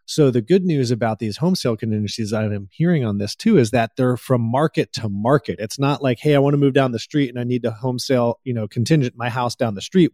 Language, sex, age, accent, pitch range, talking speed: English, male, 30-49, American, 115-150 Hz, 280 wpm